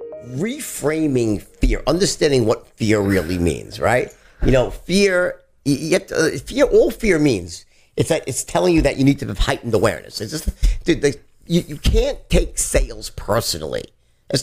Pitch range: 130-190 Hz